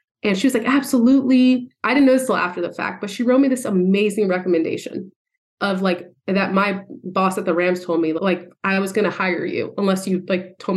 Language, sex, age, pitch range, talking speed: English, female, 30-49, 180-220 Hz, 230 wpm